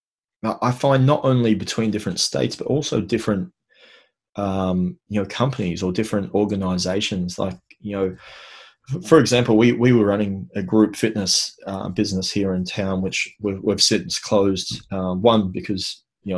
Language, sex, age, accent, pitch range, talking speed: English, male, 20-39, Australian, 95-115 Hz, 160 wpm